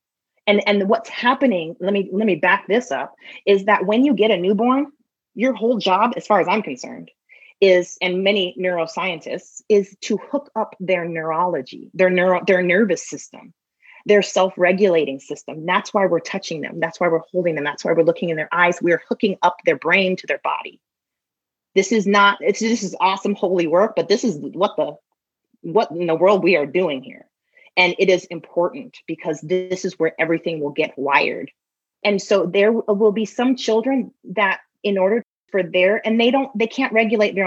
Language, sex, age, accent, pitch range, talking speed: English, female, 30-49, American, 165-210 Hz, 195 wpm